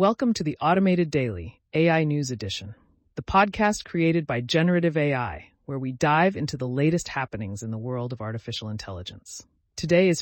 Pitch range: 115-165 Hz